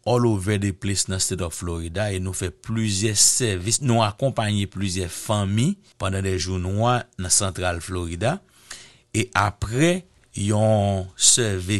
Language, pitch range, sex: English, 95-120 Hz, male